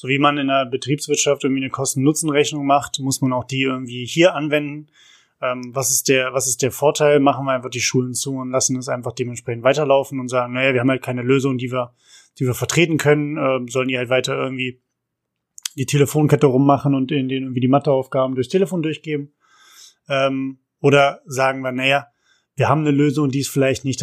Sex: male